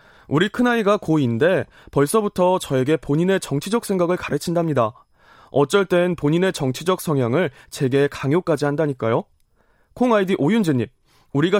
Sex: male